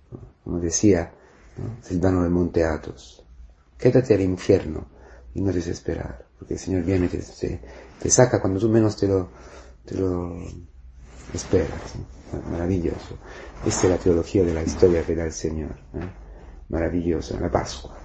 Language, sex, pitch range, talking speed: Spanish, male, 80-100 Hz, 140 wpm